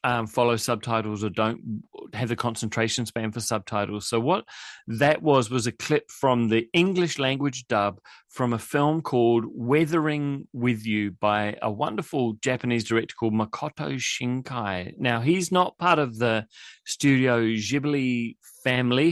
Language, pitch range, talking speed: English, 110-145 Hz, 150 wpm